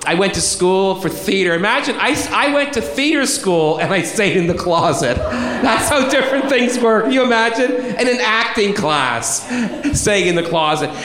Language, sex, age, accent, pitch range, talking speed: English, male, 40-59, American, 140-220 Hz, 190 wpm